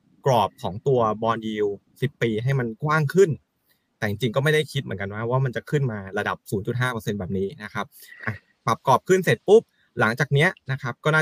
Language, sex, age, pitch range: Thai, male, 20-39, 110-145 Hz